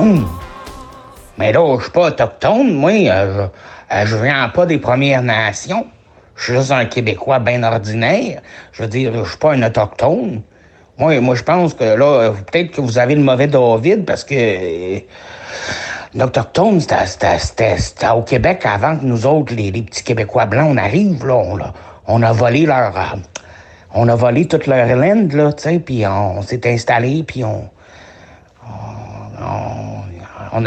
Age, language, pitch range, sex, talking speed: 60-79, French, 110-145 Hz, male, 175 wpm